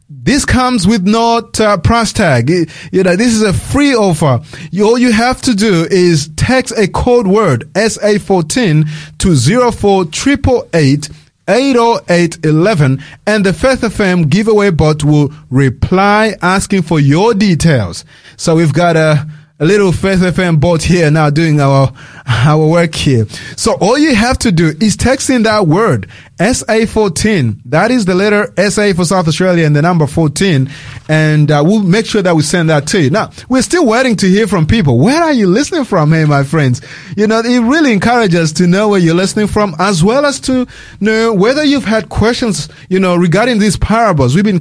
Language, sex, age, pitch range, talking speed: English, male, 30-49, 155-220 Hz, 195 wpm